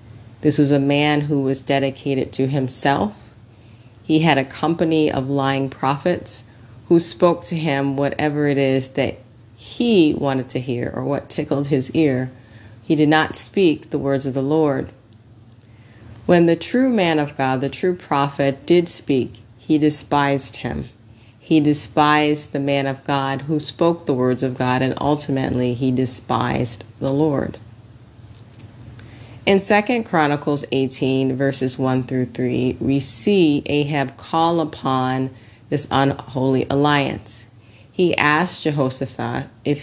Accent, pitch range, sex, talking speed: American, 115-150 Hz, female, 140 wpm